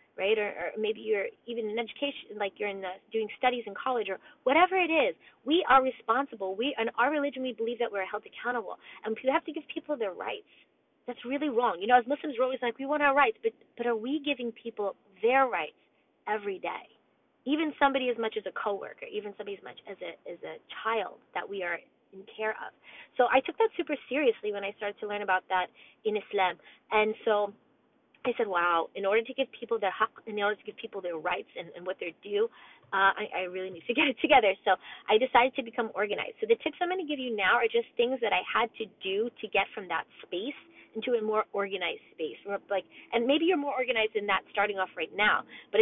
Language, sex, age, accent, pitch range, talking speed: English, female, 20-39, American, 200-280 Hz, 240 wpm